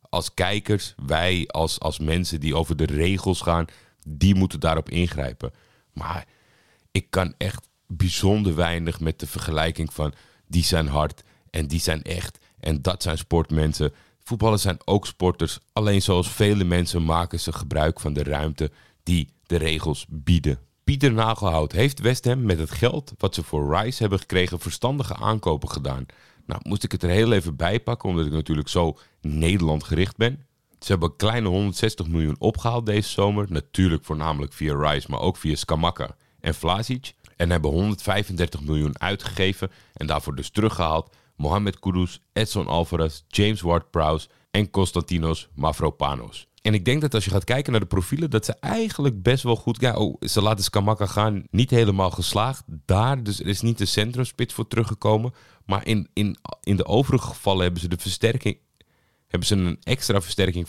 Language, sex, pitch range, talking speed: Dutch, male, 80-110 Hz, 175 wpm